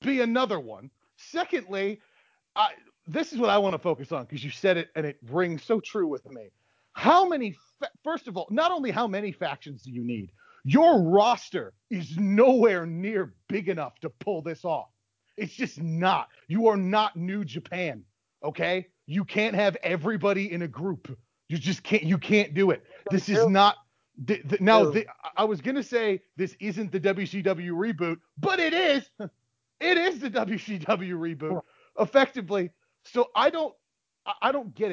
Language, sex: English, male